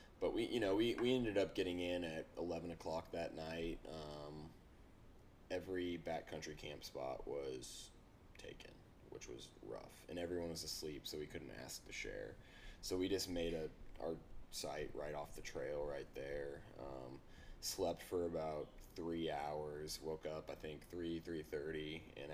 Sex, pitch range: male, 75-85 Hz